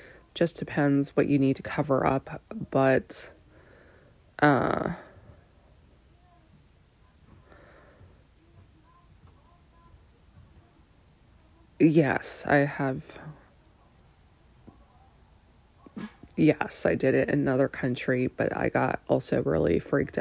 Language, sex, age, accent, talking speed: English, female, 20-39, American, 75 wpm